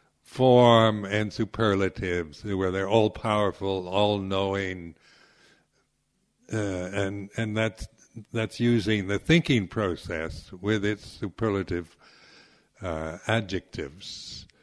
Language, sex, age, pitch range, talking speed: English, male, 60-79, 95-115 Hz, 95 wpm